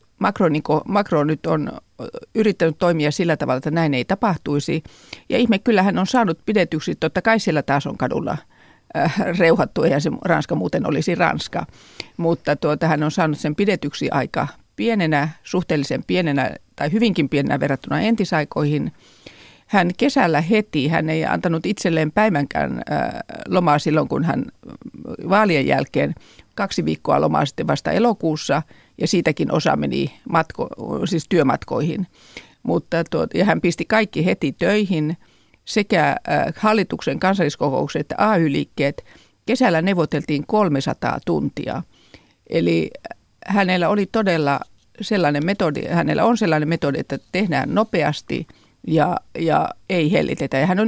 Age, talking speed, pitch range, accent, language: 50-69, 135 wpm, 150-200 Hz, native, Finnish